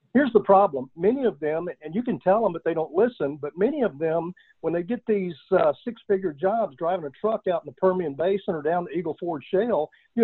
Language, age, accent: English, 50-69, American